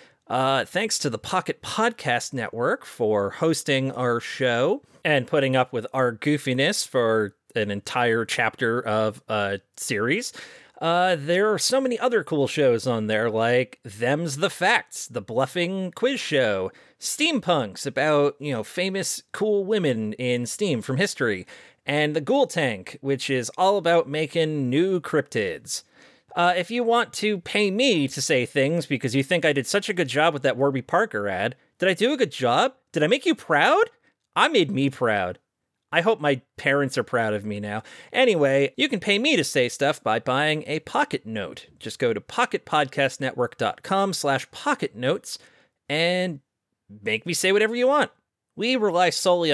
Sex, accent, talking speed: male, American, 170 wpm